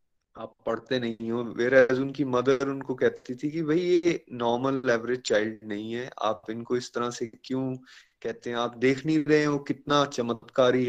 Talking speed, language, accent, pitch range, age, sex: 175 wpm, Hindi, native, 120-140 Hz, 20-39, male